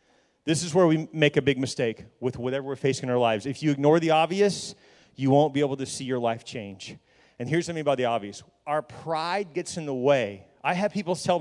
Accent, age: American, 30-49